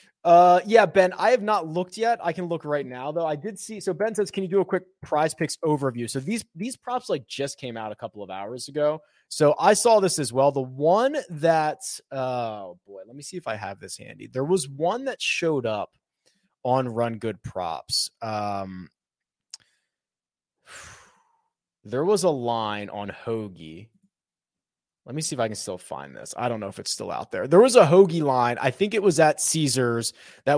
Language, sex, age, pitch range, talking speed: English, male, 20-39, 135-190 Hz, 210 wpm